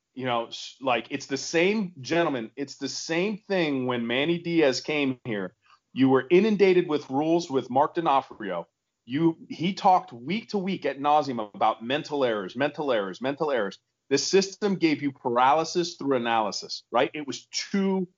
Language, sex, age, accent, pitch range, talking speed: English, male, 30-49, American, 130-175 Hz, 165 wpm